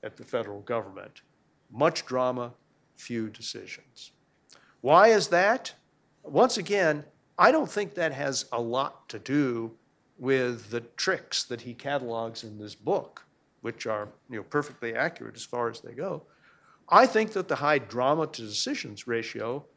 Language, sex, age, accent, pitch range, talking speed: English, male, 50-69, American, 115-145 Hz, 150 wpm